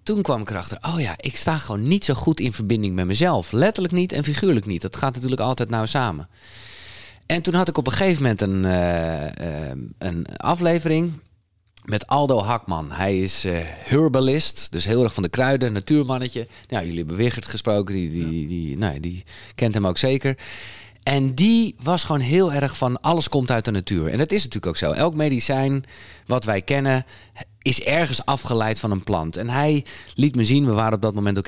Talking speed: 210 wpm